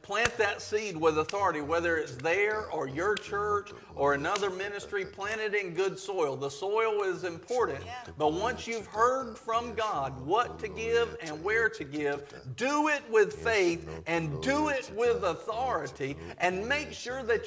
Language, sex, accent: English, male, American